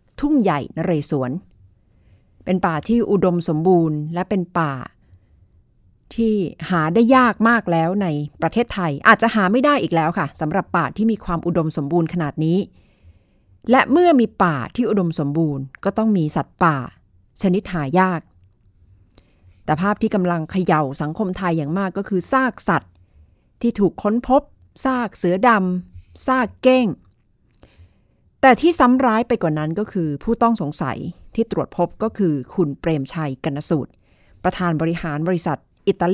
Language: Thai